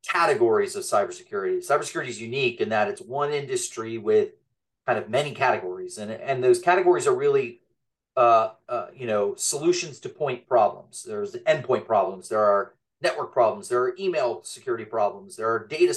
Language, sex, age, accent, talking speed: English, male, 30-49, American, 175 wpm